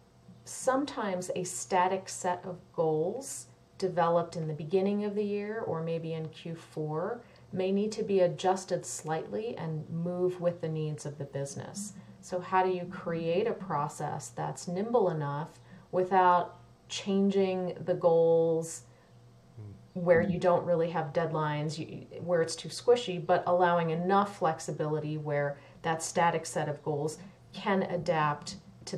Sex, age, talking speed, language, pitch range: female, 40-59, 140 wpm, English, 155-190 Hz